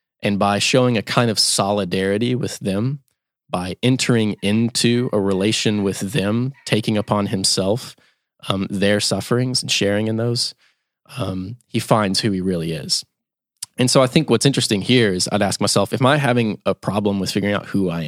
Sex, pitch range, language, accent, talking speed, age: male, 100-125 Hz, English, American, 180 wpm, 20-39